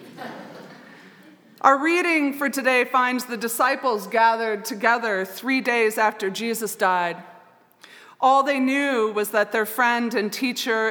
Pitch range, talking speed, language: 215-275 Hz, 125 wpm, English